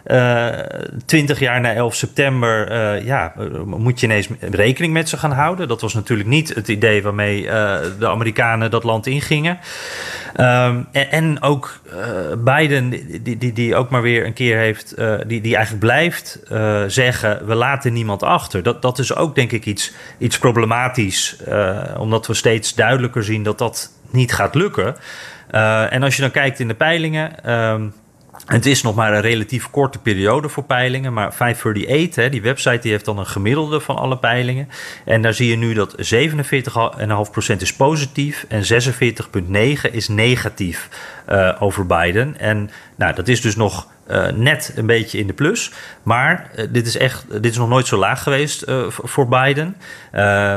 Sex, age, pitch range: male, 30-49, 110-135 Hz